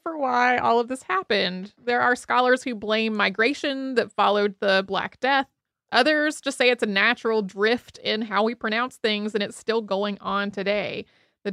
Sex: female